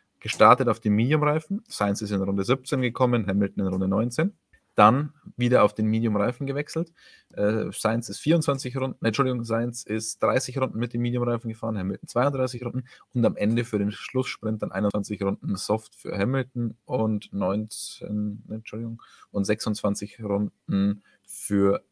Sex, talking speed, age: male, 160 wpm, 20-39